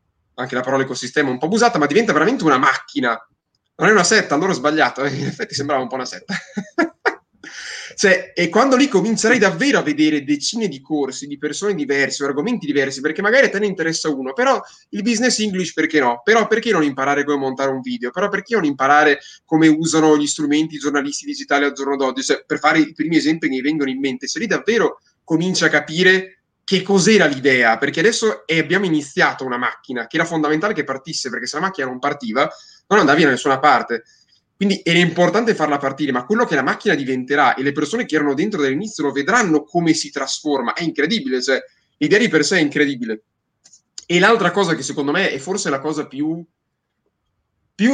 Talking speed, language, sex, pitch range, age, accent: 210 wpm, Italian, male, 140-195 Hz, 20-39, native